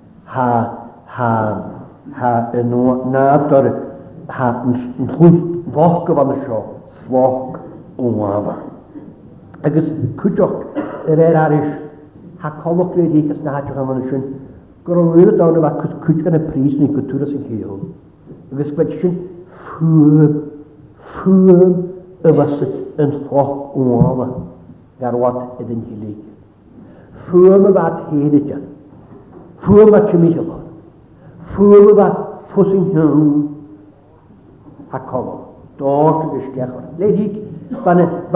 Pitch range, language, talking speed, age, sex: 135-175 Hz, English, 35 wpm, 60-79, male